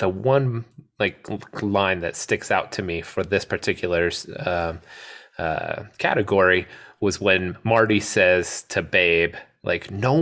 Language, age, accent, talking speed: English, 30-49, American, 135 wpm